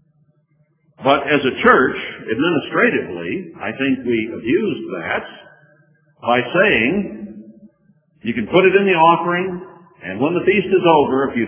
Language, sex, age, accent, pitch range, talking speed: English, male, 50-69, American, 120-155 Hz, 140 wpm